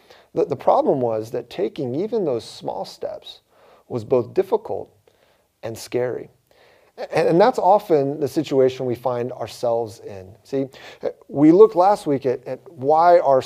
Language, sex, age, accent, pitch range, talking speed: English, male, 40-59, American, 120-165 Hz, 140 wpm